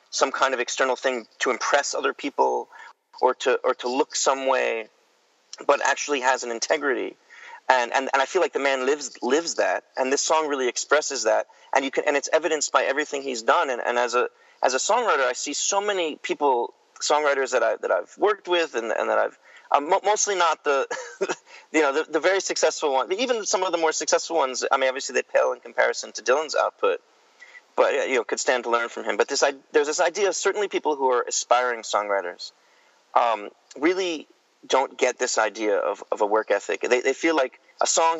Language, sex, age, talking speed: English, male, 30-49, 215 wpm